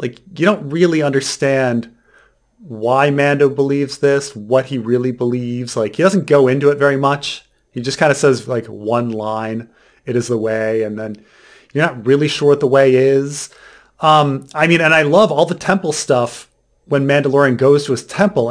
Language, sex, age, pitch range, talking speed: English, male, 30-49, 120-155 Hz, 190 wpm